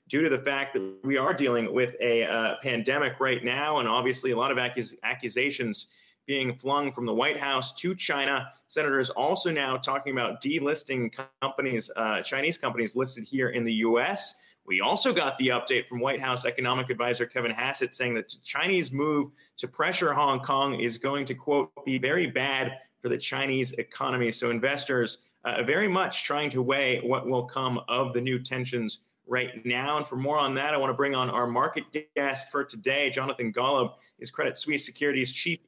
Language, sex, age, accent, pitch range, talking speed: English, male, 30-49, American, 125-150 Hz, 195 wpm